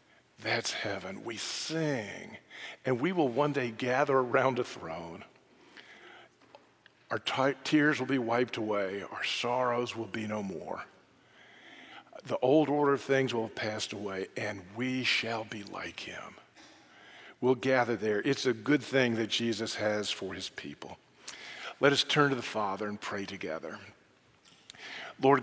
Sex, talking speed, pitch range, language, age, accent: male, 150 wpm, 110-135 Hz, English, 50-69, American